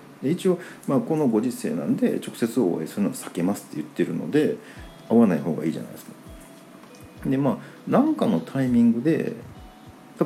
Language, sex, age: Japanese, male, 40-59